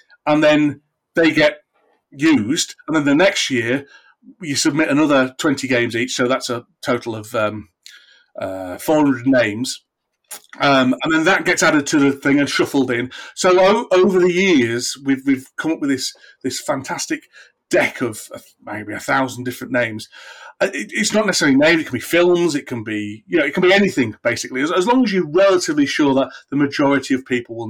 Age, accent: 40-59, British